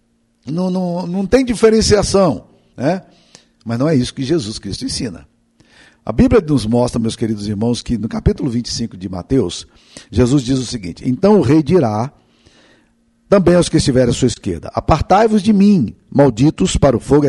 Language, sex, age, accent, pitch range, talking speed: Portuguese, male, 50-69, Brazilian, 115-150 Hz, 170 wpm